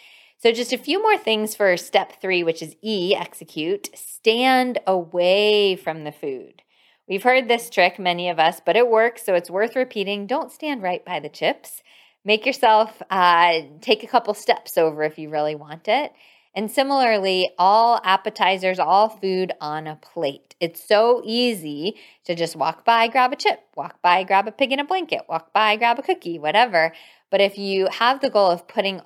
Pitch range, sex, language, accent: 160-230 Hz, female, English, American